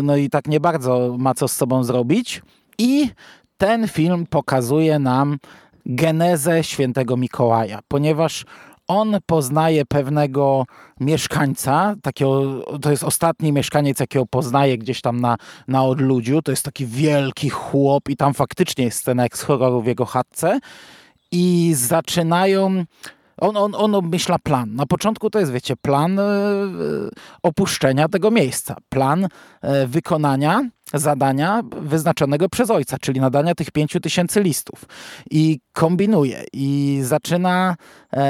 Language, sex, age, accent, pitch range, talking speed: Polish, male, 20-39, native, 135-170 Hz, 130 wpm